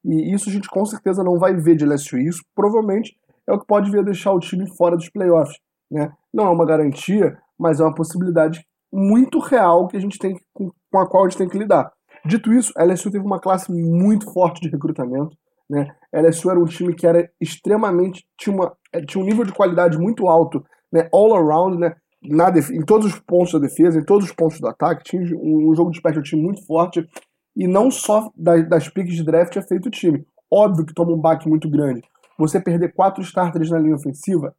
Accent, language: Brazilian, Portuguese